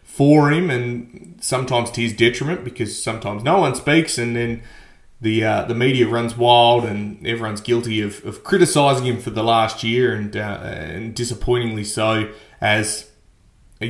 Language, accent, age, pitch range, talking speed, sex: English, Australian, 20-39, 110-130 Hz, 165 wpm, male